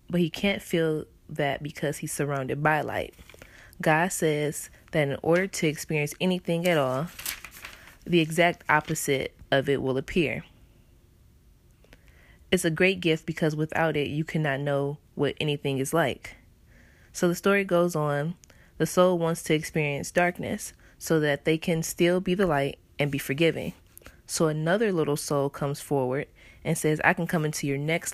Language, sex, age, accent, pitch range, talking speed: English, female, 20-39, American, 140-165 Hz, 165 wpm